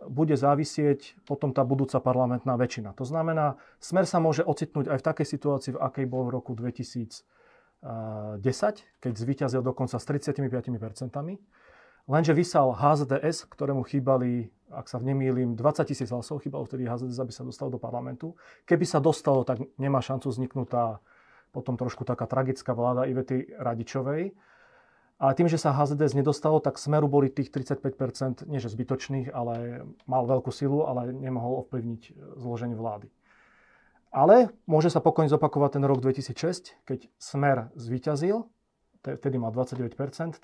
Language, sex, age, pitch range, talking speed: Slovak, male, 40-59, 125-145 Hz, 145 wpm